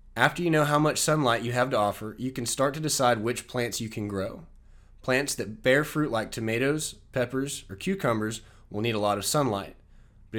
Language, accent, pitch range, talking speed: English, American, 110-135 Hz, 210 wpm